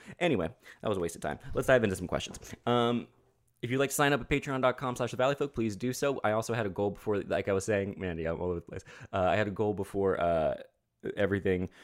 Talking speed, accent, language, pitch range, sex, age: 265 wpm, American, English, 85-115 Hz, male, 20-39